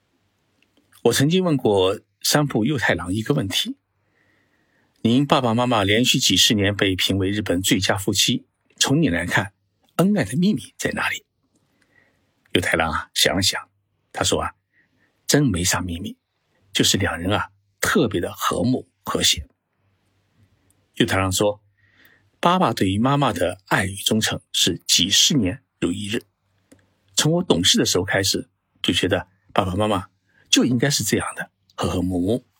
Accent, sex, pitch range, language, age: native, male, 95-110 Hz, Chinese, 50-69